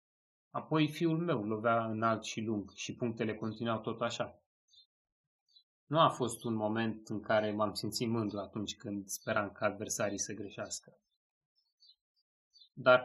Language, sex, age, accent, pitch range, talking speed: Romanian, male, 30-49, native, 110-135 Hz, 140 wpm